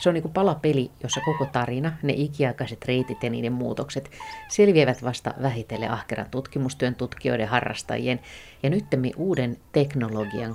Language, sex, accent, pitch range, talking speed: Finnish, female, native, 120-150 Hz, 135 wpm